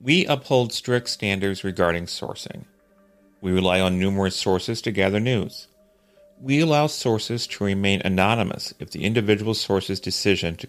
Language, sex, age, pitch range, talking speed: English, male, 40-59, 100-120 Hz, 145 wpm